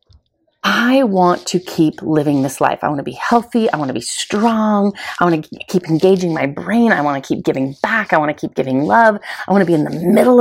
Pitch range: 160-215 Hz